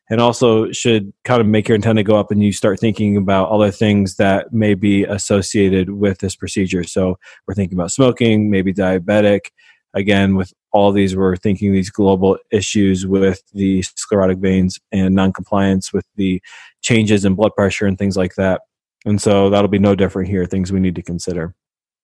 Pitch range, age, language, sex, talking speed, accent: 95-115 Hz, 20-39, English, male, 185 wpm, American